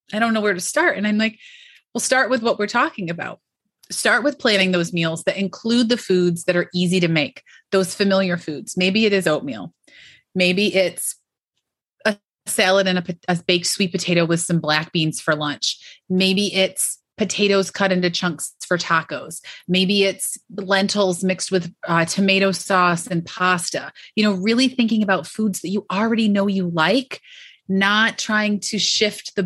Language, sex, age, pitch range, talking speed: English, female, 30-49, 180-225 Hz, 180 wpm